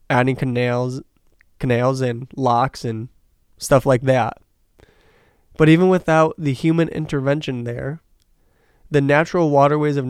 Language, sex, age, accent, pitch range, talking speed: English, male, 20-39, American, 125-145 Hz, 120 wpm